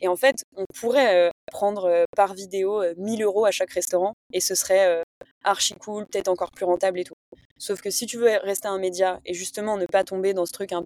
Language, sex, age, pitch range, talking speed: French, female, 20-39, 180-210 Hz, 250 wpm